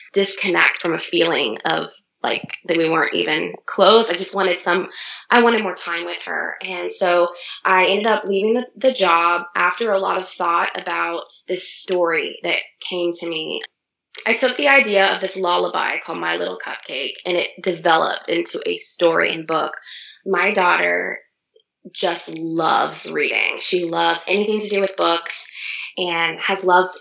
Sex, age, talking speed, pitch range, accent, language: female, 20-39, 165 wpm, 170-240 Hz, American, English